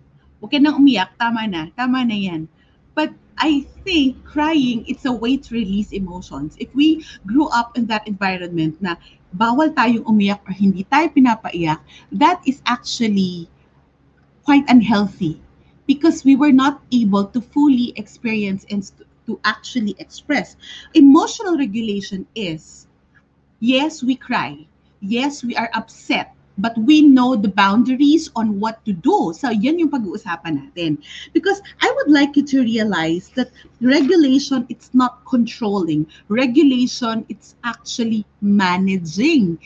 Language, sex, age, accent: English, female, 30-49, Filipino